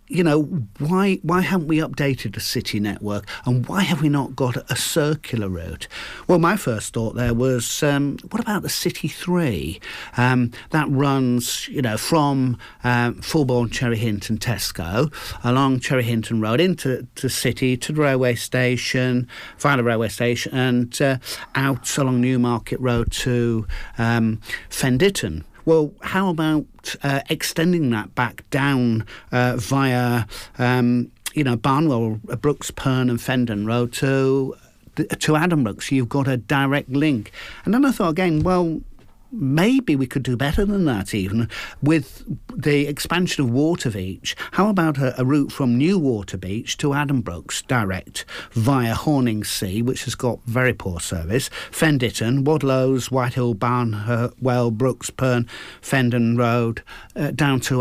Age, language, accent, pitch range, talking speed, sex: 50-69, English, British, 115-145 Hz, 155 wpm, male